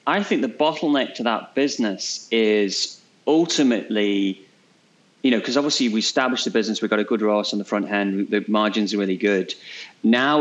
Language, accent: English, British